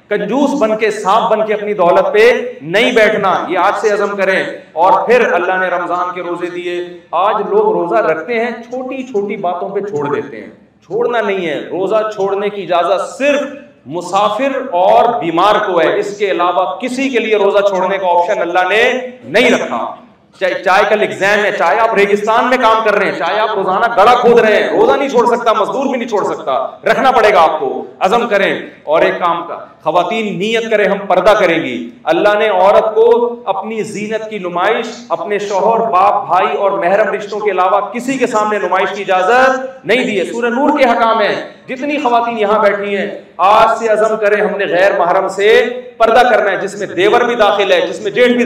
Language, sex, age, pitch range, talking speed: Urdu, male, 40-59, 195-240 Hz, 205 wpm